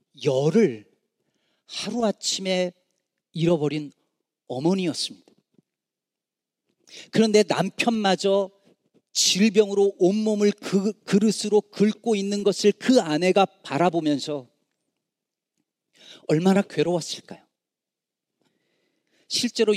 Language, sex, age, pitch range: Korean, male, 40-59, 150-210 Hz